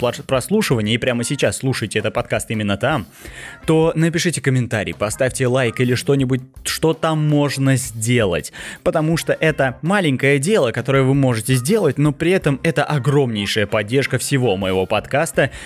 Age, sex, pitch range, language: 20-39, male, 120-150 Hz, Russian